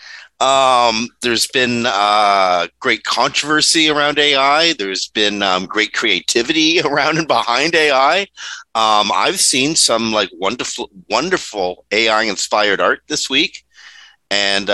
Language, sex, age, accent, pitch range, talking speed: English, male, 50-69, American, 105-170 Hz, 120 wpm